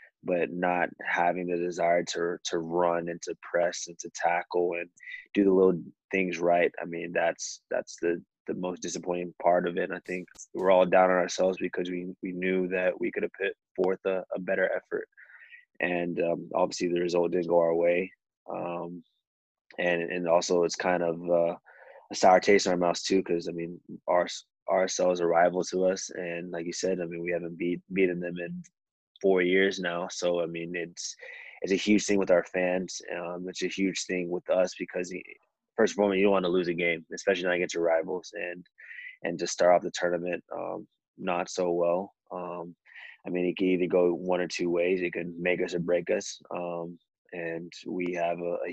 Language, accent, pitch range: English, American, 85-90 Hz